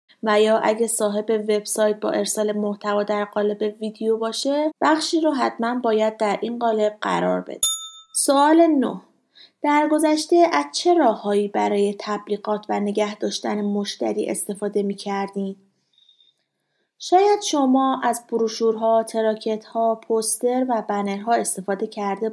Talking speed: 125 wpm